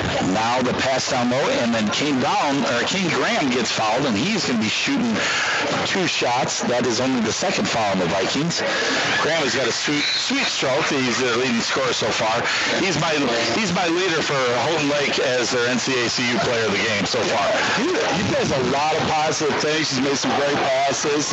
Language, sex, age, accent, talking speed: English, male, 50-69, American, 205 wpm